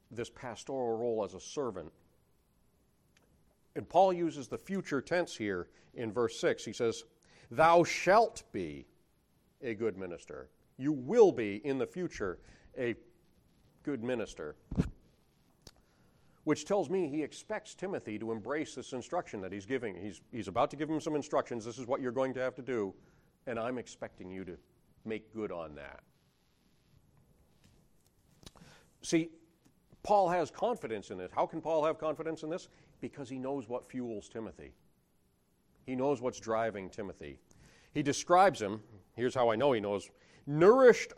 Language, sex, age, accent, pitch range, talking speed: English, male, 40-59, American, 115-160 Hz, 155 wpm